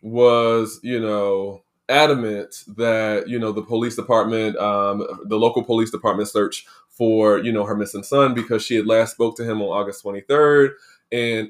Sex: male